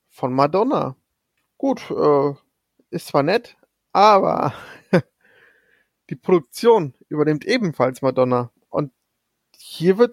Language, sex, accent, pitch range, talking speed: German, male, German, 145-185 Hz, 95 wpm